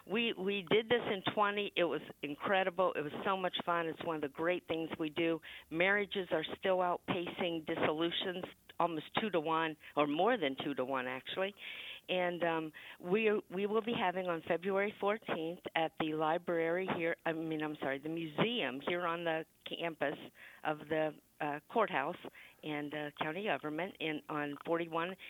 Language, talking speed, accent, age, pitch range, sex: English, 175 wpm, American, 50-69, 155-190 Hz, female